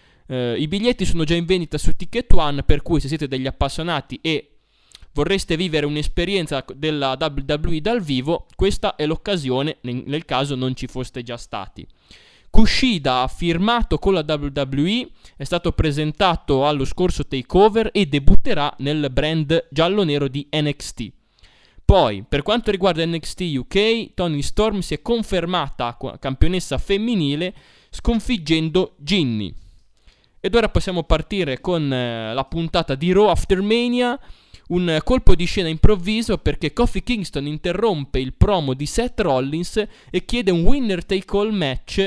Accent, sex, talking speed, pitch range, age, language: native, male, 140 wpm, 135-190 Hz, 20-39, Italian